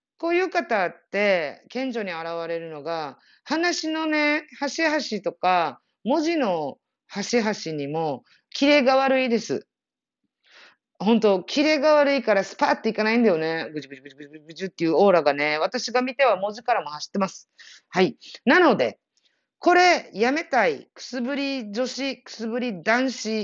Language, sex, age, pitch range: Japanese, female, 40-59, 170-280 Hz